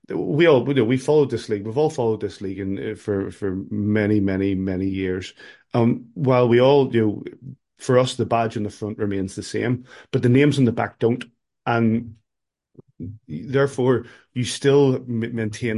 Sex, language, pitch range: male, English, 105-120 Hz